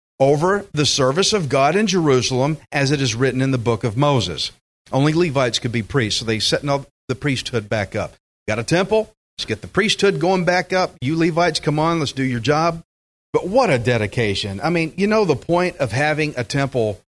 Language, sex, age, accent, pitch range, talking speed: English, male, 40-59, American, 125-175 Hz, 215 wpm